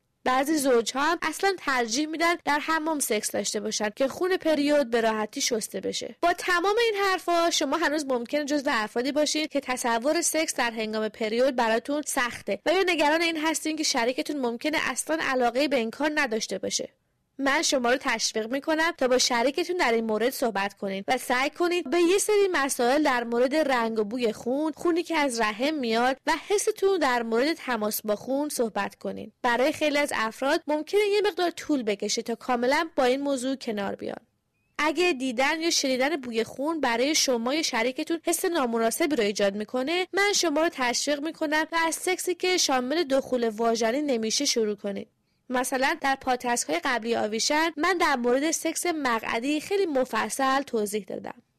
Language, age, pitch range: English, 20-39, 240-330 Hz